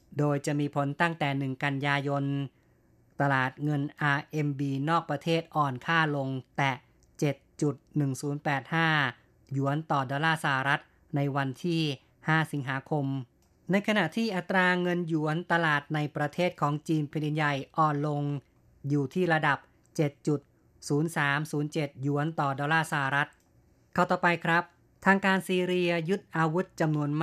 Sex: female